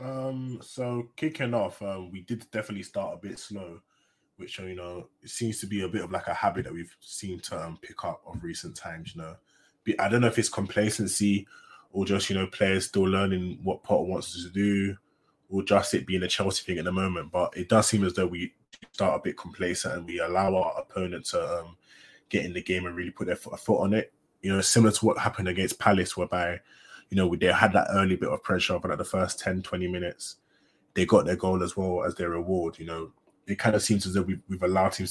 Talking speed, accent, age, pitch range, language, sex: 245 wpm, British, 20-39, 90-105 Hz, English, male